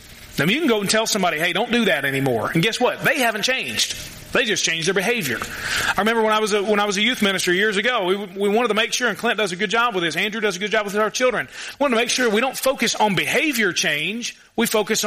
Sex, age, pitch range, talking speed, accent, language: male, 30-49, 175-230 Hz, 285 wpm, American, English